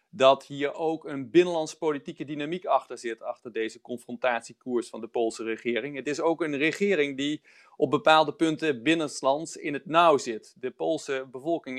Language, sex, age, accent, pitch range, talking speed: Dutch, male, 40-59, Dutch, 125-155 Hz, 170 wpm